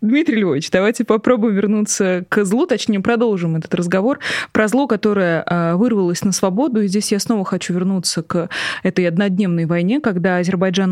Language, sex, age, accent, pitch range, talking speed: Russian, female, 20-39, native, 180-220 Hz, 160 wpm